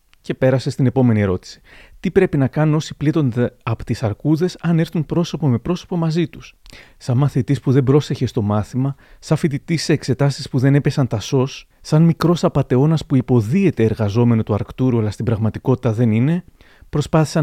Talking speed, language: 175 wpm, Greek